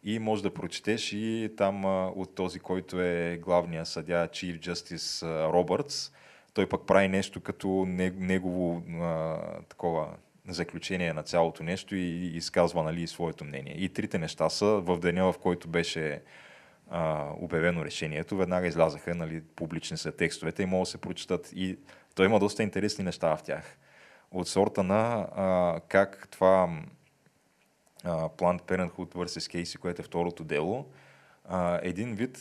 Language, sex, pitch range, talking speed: Bulgarian, male, 85-105 Hz, 155 wpm